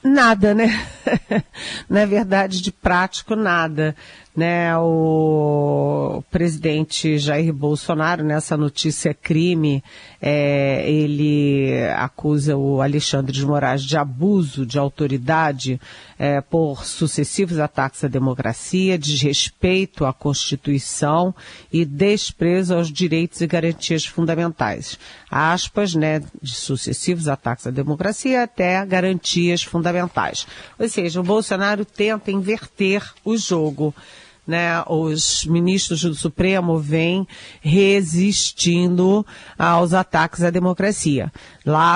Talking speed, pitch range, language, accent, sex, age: 100 wpm, 145-180 Hz, Portuguese, Brazilian, female, 40-59